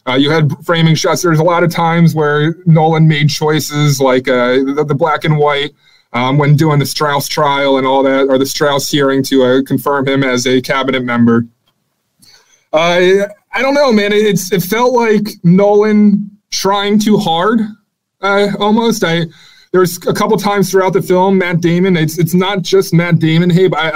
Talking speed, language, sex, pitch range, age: 195 wpm, English, male, 150-190 Hz, 20-39